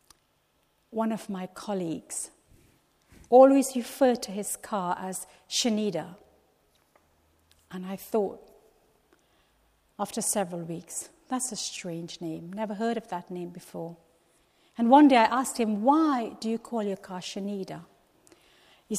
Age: 50-69